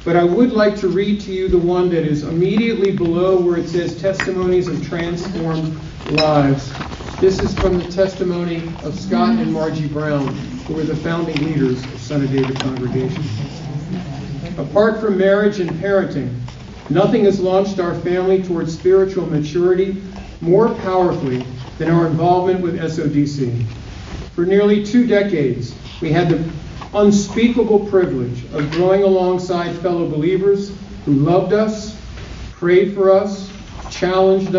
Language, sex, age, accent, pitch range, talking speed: English, male, 50-69, American, 145-190 Hz, 140 wpm